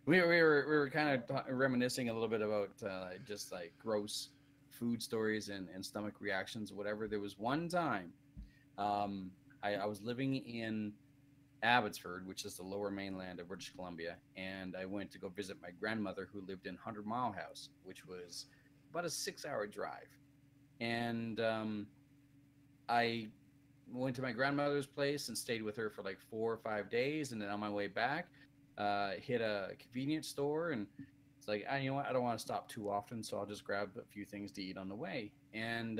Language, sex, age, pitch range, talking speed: English, male, 30-49, 105-140 Hz, 195 wpm